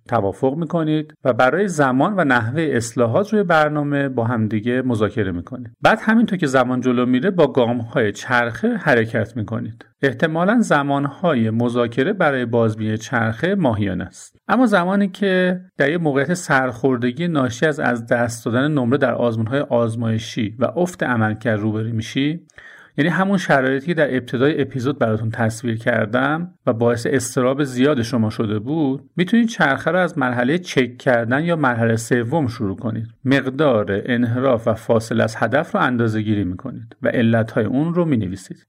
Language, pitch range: Persian, 115-160 Hz